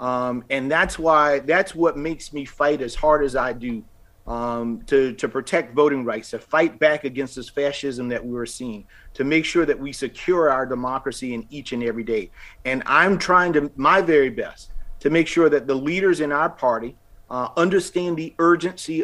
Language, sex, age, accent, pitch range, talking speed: English, male, 50-69, American, 135-180 Hz, 195 wpm